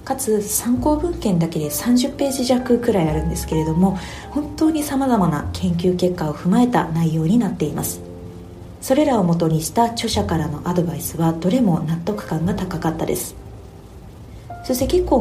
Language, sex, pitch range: Japanese, female, 155-235 Hz